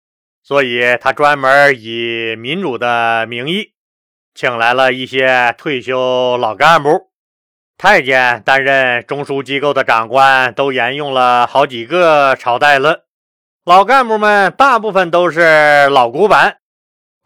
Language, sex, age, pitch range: Chinese, male, 30-49, 130-170 Hz